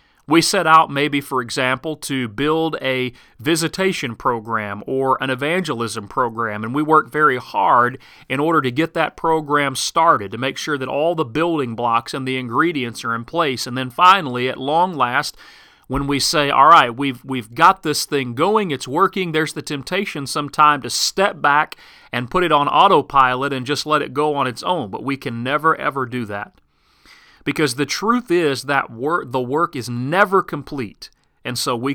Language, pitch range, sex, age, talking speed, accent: English, 130-160 Hz, male, 40-59, 190 wpm, American